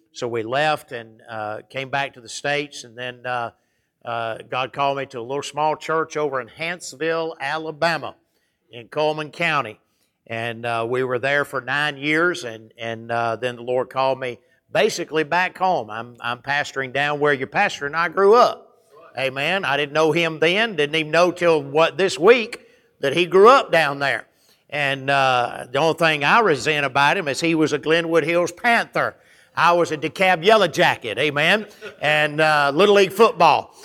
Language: English